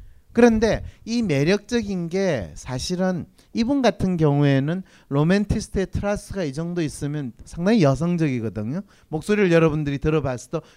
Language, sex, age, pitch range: Korean, male, 40-59, 150-220 Hz